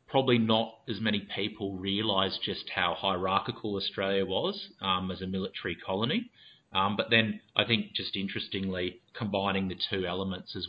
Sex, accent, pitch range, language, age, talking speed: male, Australian, 90-105 Hz, English, 30-49, 155 wpm